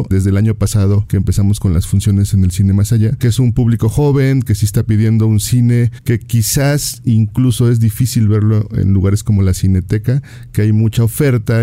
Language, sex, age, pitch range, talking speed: Spanish, male, 40-59, 100-115 Hz, 205 wpm